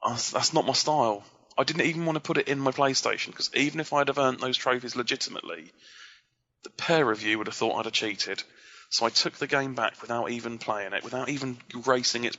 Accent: British